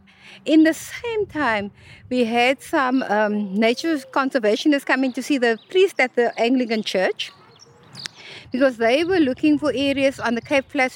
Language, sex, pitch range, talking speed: English, female, 230-310 Hz, 160 wpm